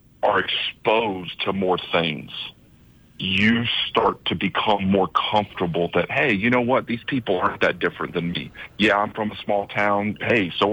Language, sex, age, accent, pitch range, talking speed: English, male, 40-59, American, 90-105 Hz, 175 wpm